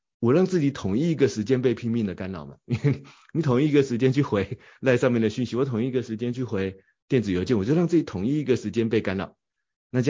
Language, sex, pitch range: Chinese, male, 100-135 Hz